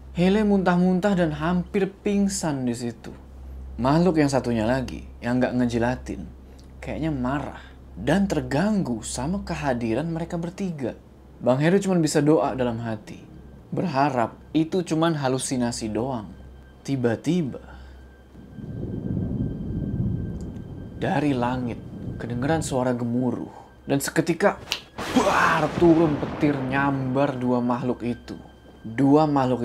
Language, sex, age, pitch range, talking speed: Indonesian, male, 20-39, 110-155 Hz, 100 wpm